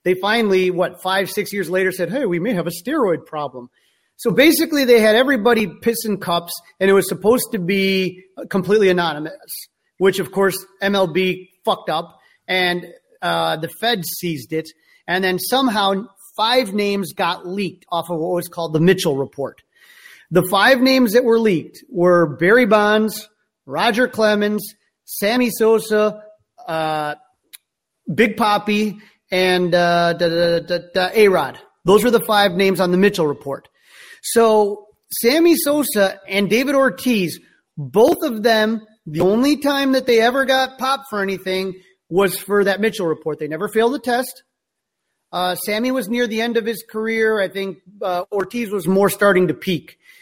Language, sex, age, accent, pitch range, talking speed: English, male, 30-49, American, 180-225 Hz, 160 wpm